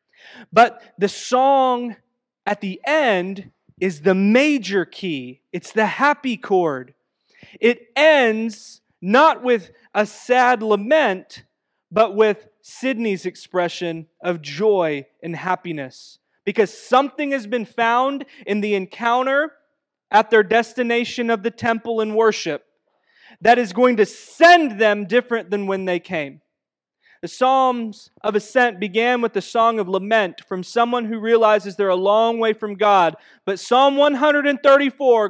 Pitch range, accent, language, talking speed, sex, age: 195-245 Hz, American, English, 135 wpm, male, 20-39